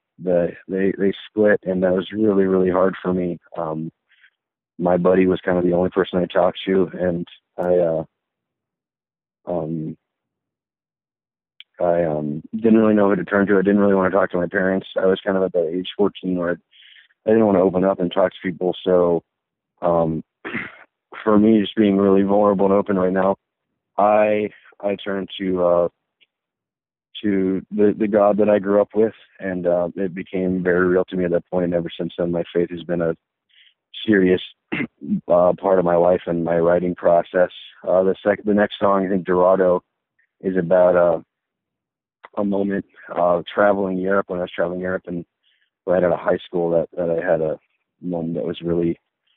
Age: 30-49